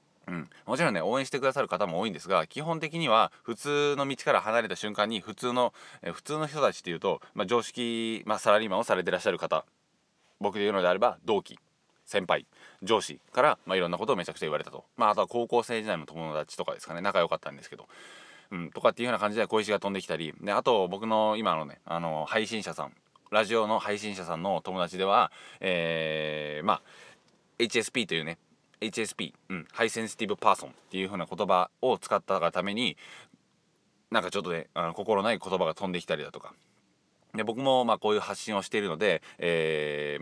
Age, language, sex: 20-39, Japanese, male